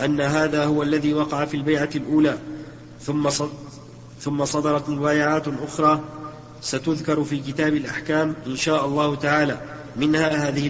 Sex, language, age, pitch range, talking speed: male, Arabic, 40-59, 140-155 Hz, 125 wpm